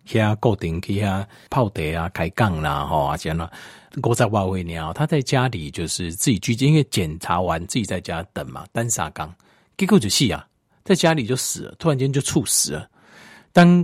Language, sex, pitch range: Chinese, male, 85-140 Hz